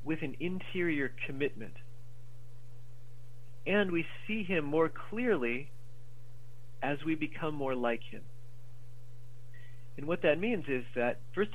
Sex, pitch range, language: male, 120-145 Hz, English